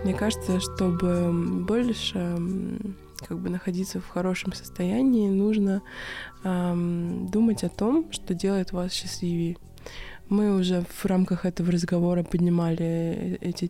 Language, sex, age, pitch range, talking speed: Russian, female, 20-39, 175-195 Hz, 120 wpm